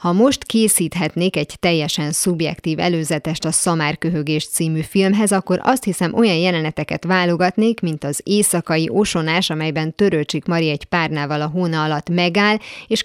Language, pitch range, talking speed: Hungarian, 155-185 Hz, 145 wpm